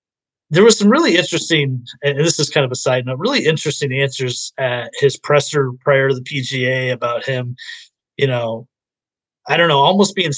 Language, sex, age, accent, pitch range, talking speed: English, male, 30-49, American, 125-155 Hz, 185 wpm